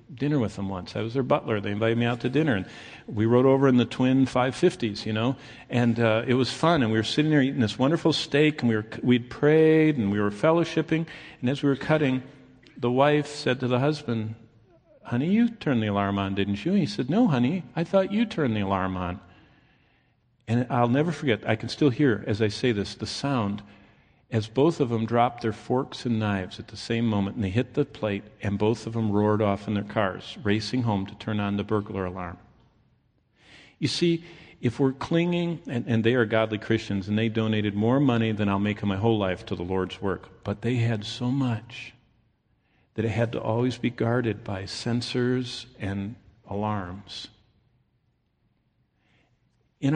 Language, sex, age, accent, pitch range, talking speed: English, male, 50-69, American, 105-130 Hz, 205 wpm